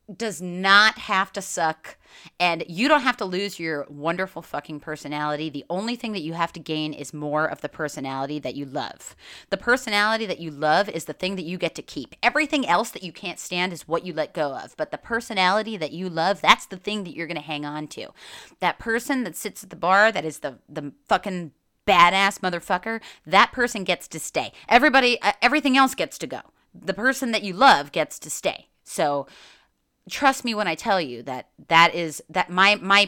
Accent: American